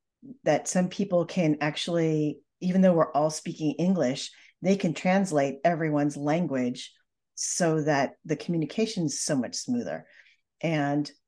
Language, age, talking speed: English, 40-59, 135 wpm